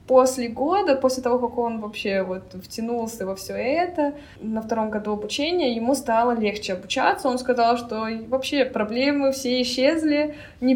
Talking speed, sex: 155 wpm, female